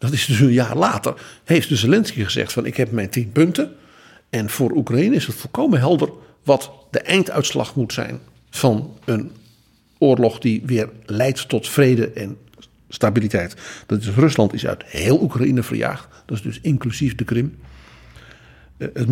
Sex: male